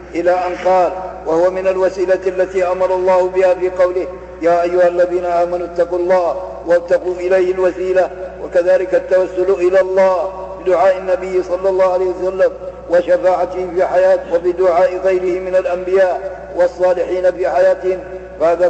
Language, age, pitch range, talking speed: Arabic, 50-69, 175-185 Hz, 135 wpm